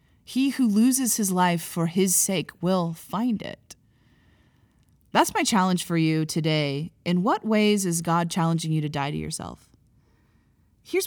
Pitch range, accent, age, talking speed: 165-205 Hz, American, 30-49, 155 wpm